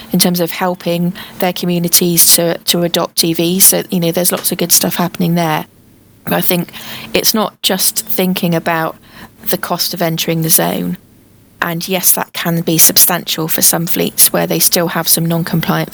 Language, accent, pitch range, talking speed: English, British, 160-180 Hz, 175 wpm